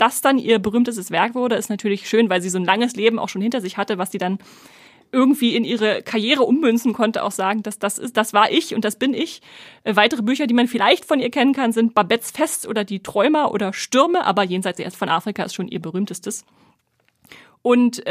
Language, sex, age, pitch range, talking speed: German, female, 30-49, 205-245 Hz, 225 wpm